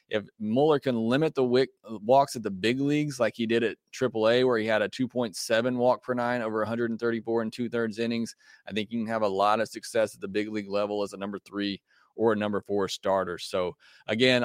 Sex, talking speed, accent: male, 235 wpm, American